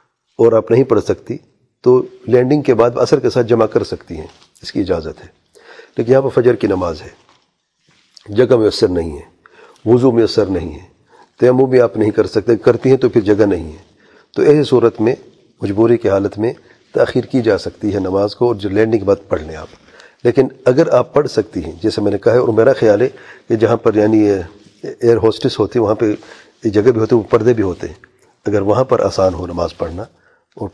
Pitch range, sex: 110-135 Hz, male